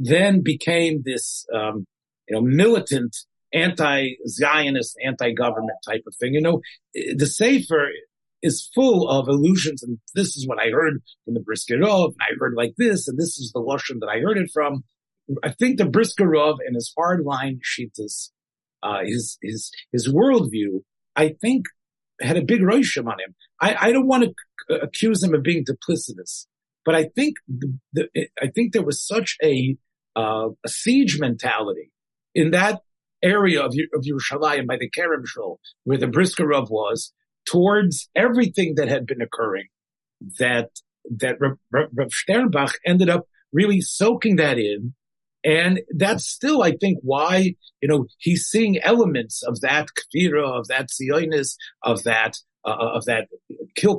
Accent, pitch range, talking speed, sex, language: American, 130-195 Hz, 160 wpm, male, English